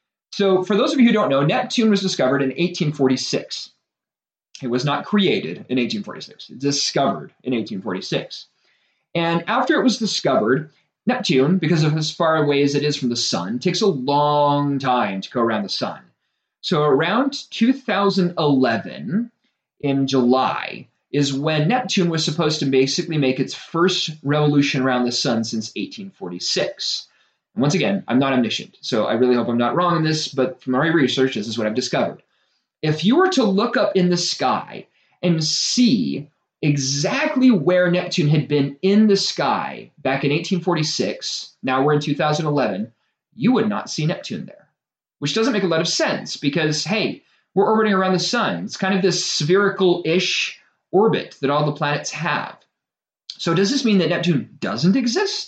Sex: male